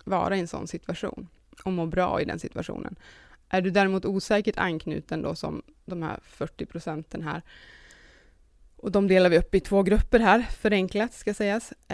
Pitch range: 170-195 Hz